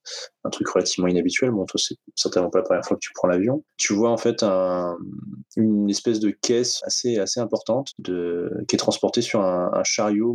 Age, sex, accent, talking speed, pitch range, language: 20-39, male, French, 210 wpm, 90-110 Hz, French